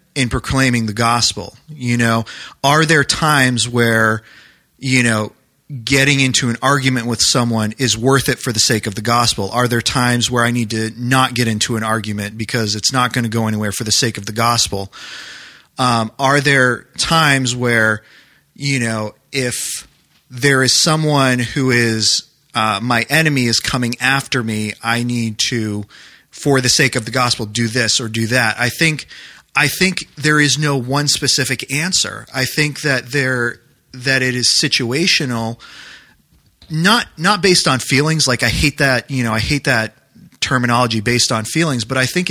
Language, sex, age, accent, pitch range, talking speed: English, male, 30-49, American, 115-140 Hz, 175 wpm